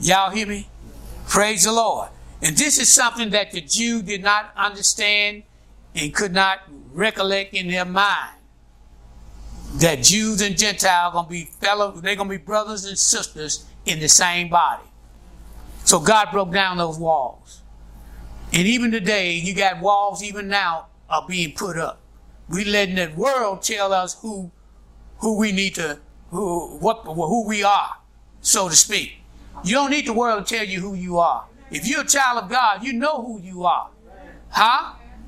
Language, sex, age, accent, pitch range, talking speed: English, male, 60-79, American, 170-225 Hz, 165 wpm